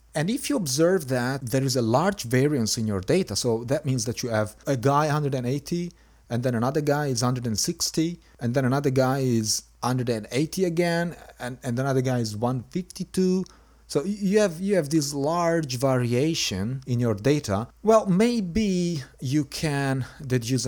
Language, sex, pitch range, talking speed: English, male, 100-145 Hz, 165 wpm